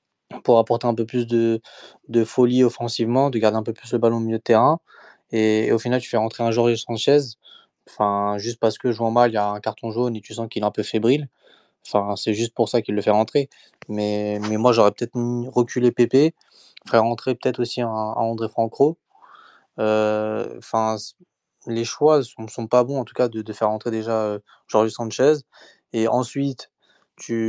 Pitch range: 110-125 Hz